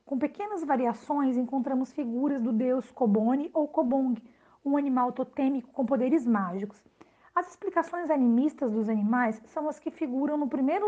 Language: Portuguese